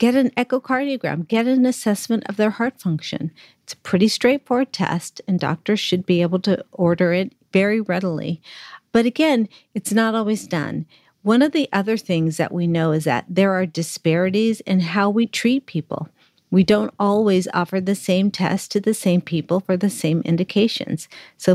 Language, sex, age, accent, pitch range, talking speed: English, female, 50-69, American, 175-225 Hz, 180 wpm